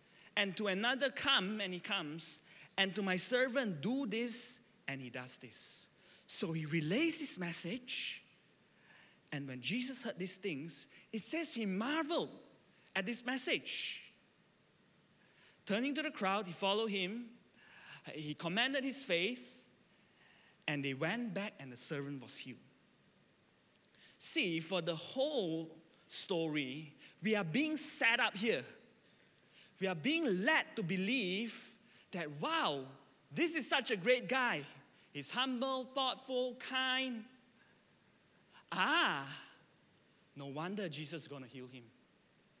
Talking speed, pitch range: 130 wpm, 160-250 Hz